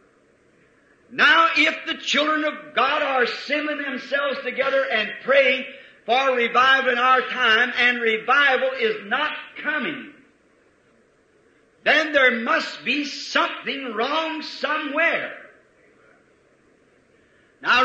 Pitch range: 245-280 Hz